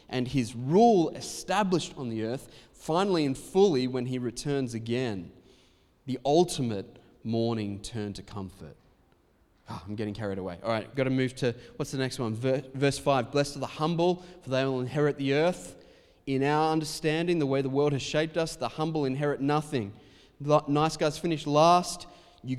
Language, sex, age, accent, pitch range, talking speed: English, male, 20-39, Australian, 120-150 Hz, 175 wpm